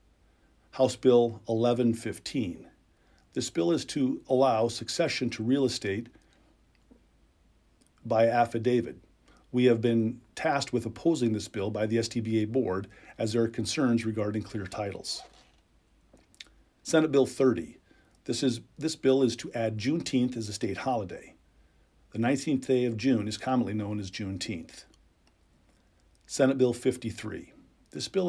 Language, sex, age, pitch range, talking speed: English, male, 50-69, 105-125 Hz, 135 wpm